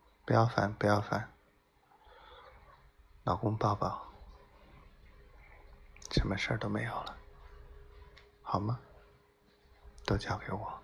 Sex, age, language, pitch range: male, 20-39, Chinese, 95-110 Hz